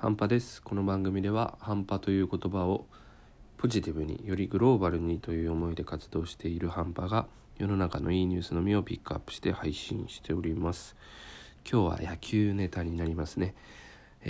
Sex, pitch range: male, 85-105 Hz